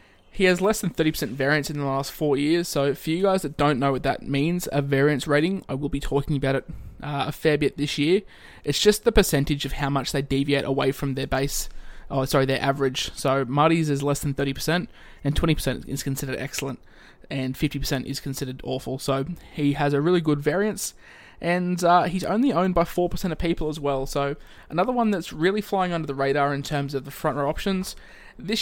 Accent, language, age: Australian, English, 20-39